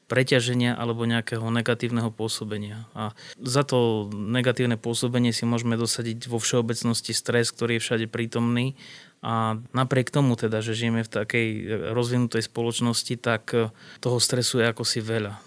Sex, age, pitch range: male, 20-39, 115-125 Hz